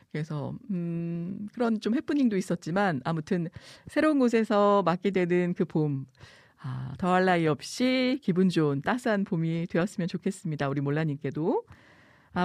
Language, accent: Korean, native